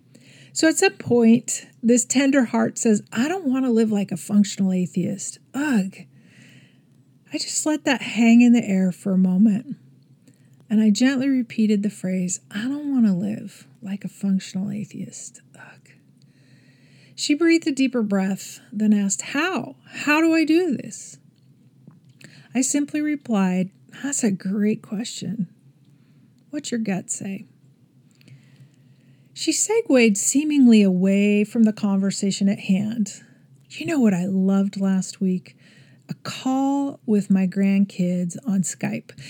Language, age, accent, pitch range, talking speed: English, 40-59, American, 185-250 Hz, 140 wpm